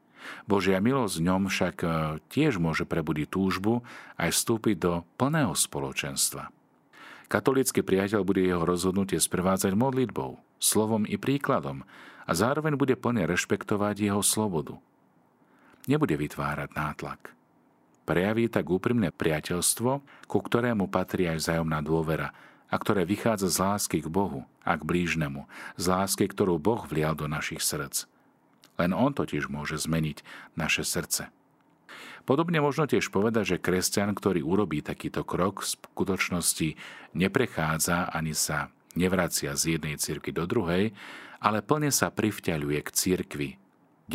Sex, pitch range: male, 80-105 Hz